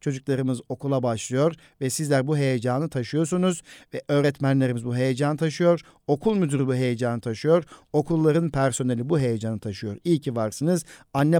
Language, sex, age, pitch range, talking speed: Turkish, male, 50-69, 130-165 Hz, 140 wpm